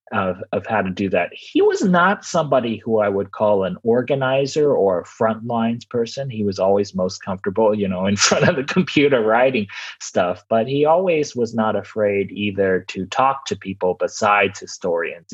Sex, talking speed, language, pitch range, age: male, 190 wpm, English, 95-115 Hz, 30-49